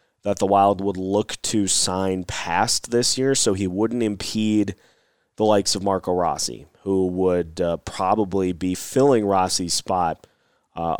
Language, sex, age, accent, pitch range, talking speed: English, male, 30-49, American, 95-110 Hz, 155 wpm